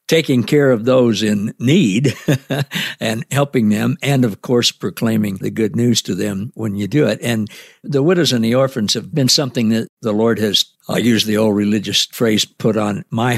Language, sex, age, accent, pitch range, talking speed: English, male, 60-79, American, 105-125 Hz, 195 wpm